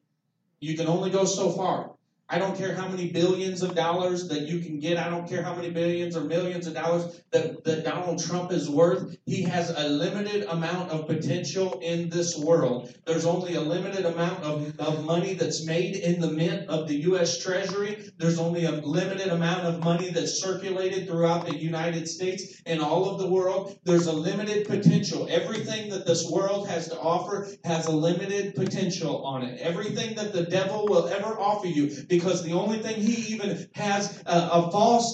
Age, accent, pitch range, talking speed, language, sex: 40-59, American, 165-200 Hz, 195 wpm, English, male